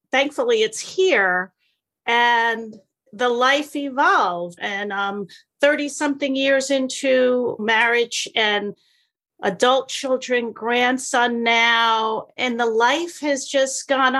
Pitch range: 195-260 Hz